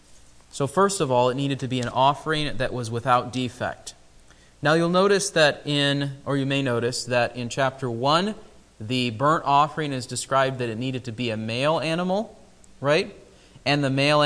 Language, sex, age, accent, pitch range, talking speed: English, male, 30-49, American, 115-140 Hz, 185 wpm